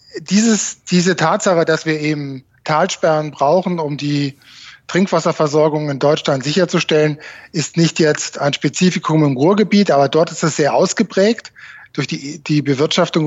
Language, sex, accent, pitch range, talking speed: German, male, German, 145-170 Hz, 140 wpm